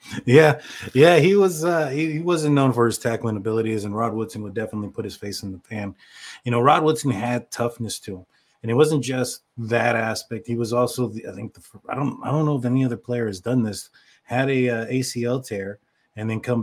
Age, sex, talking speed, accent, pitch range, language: 20-39, male, 235 wpm, American, 110-125 Hz, English